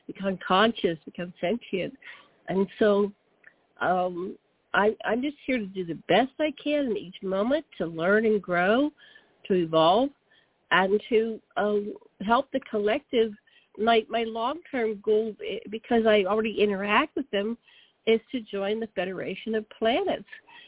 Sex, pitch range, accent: female, 200-235 Hz, American